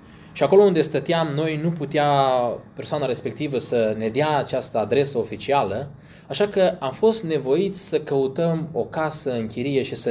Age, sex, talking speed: 20-39, male, 160 wpm